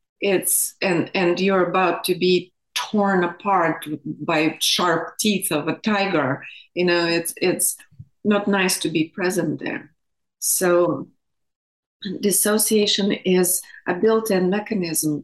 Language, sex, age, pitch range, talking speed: English, female, 30-49, 175-210 Hz, 120 wpm